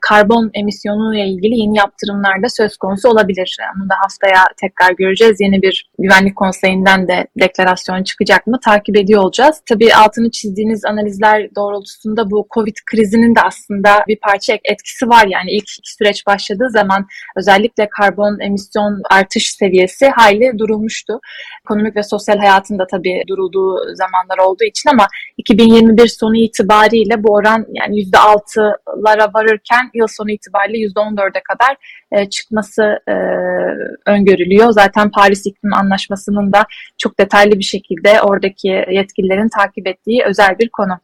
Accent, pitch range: native, 200-225 Hz